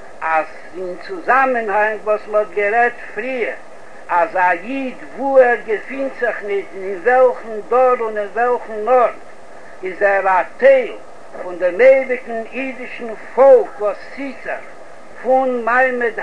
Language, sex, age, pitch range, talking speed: Hebrew, male, 60-79, 215-255 Hz, 125 wpm